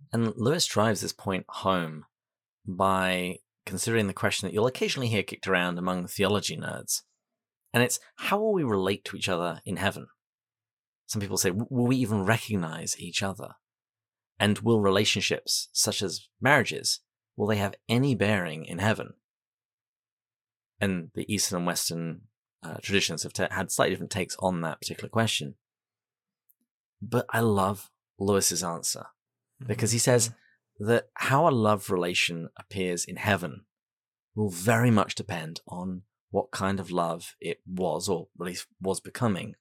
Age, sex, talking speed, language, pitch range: 30-49, male, 155 wpm, English, 95-120 Hz